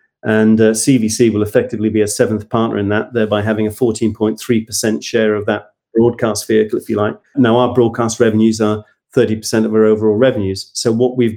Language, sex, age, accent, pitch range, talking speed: English, male, 40-59, British, 105-120 Hz, 190 wpm